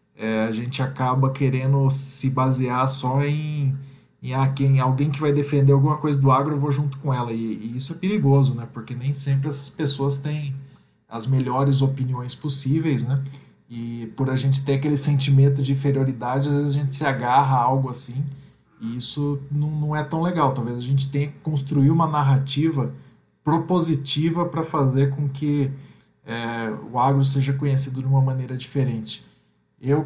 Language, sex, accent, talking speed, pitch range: Portuguese, male, Brazilian, 180 wpm, 130-145 Hz